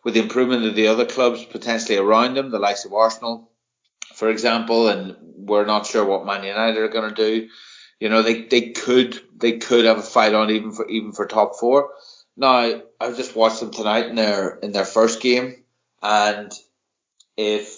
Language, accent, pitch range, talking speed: English, Irish, 100-120 Hz, 190 wpm